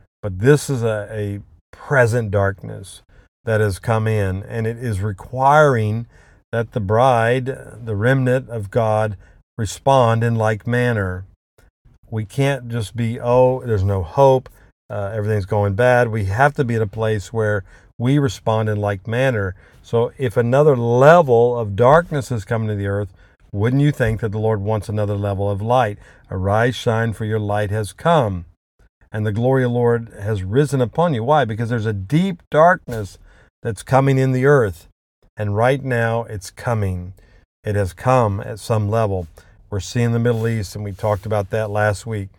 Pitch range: 100-120 Hz